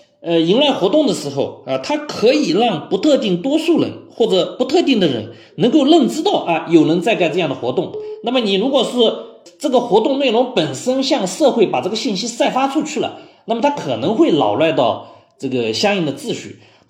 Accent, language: native, Chinese